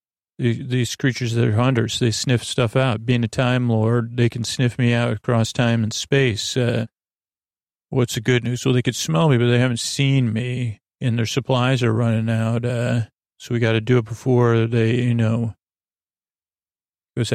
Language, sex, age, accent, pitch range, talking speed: English, male, 40-59, American, 115-125 Hz, 190 wpm